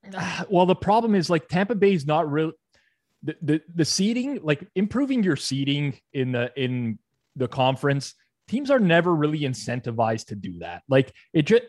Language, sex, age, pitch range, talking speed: English, male, 20-39, 120-150 Hz, 175 wpm